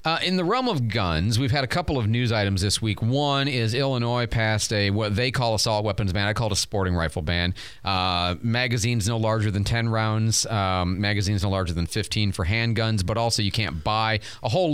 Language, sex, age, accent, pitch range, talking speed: English, male, 40-59, American, 100-125 Hz, 220 wpm